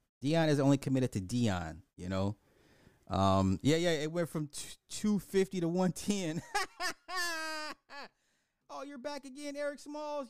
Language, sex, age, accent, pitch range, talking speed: English, male, 30-49, American, 90-140 Hz, 150 wpm